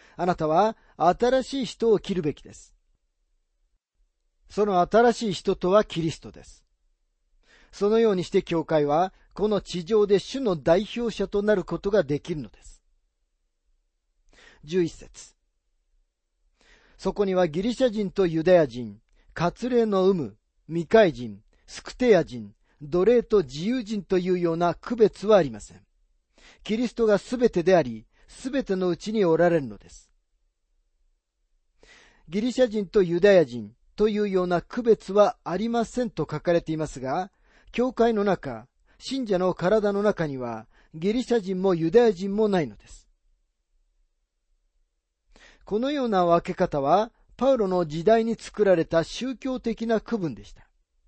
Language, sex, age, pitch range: Japanese, male, 40-59, 145-215 Hz